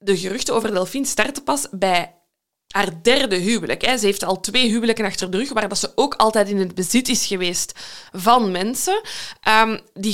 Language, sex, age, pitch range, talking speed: Dutch, female, 20-39, 200-250 Hz, 180 wpm